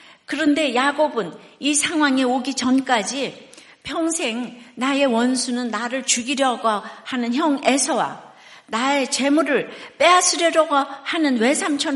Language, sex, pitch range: Korean, female, 220-295 Hz